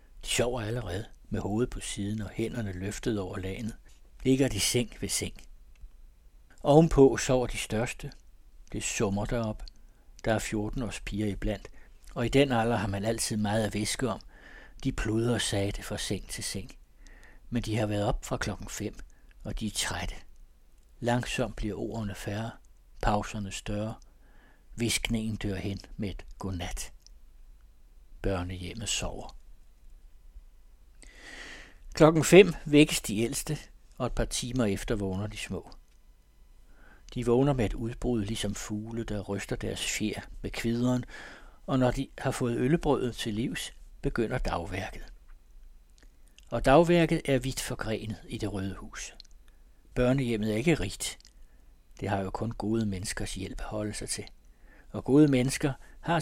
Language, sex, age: Danish, male, 60-79